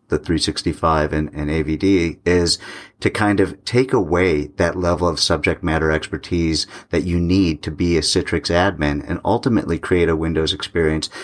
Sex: male